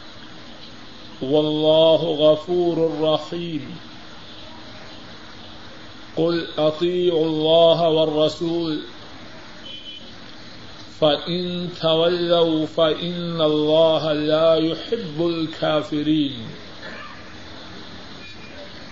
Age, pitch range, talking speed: 50-69, 150-170 Hz, 45 wpm